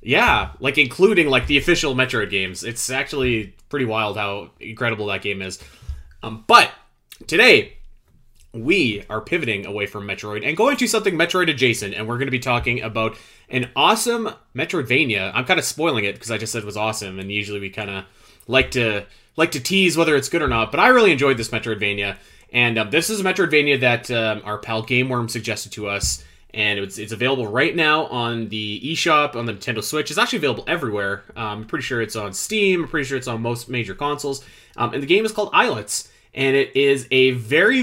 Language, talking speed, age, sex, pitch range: English, 210 wpm, 20-39, male, 105-150 Hz